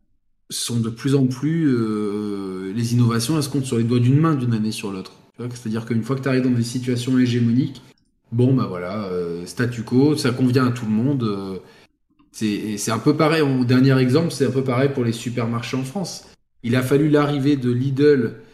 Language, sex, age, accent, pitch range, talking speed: French, male, 20-39, French, 110-140 Hz, 220 wpm